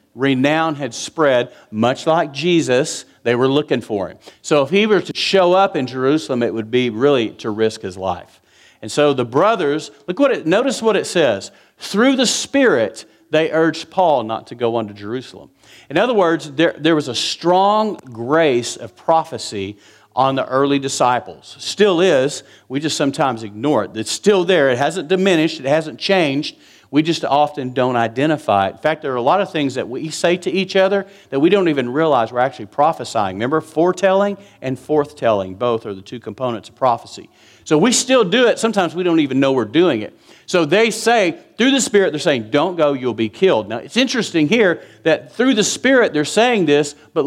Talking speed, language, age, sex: 200 wpm, English, 50-69, male